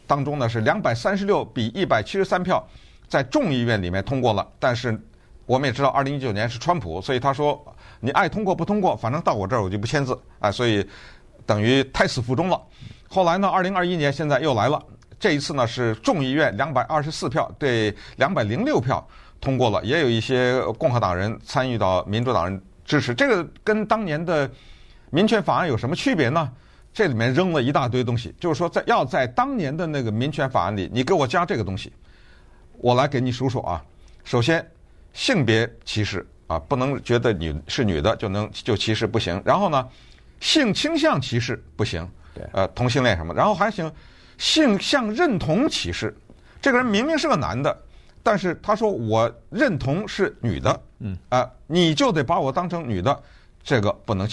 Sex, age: male, 50-69